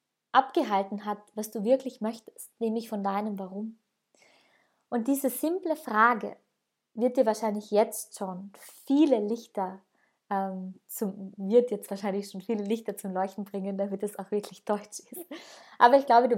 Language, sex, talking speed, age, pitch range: German, female, 130 wpm, 20-39, 205-250 Hz